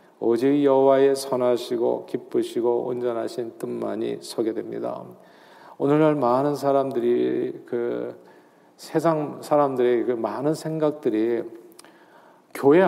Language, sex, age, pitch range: Korean, male, 40-59, 125-160 Hz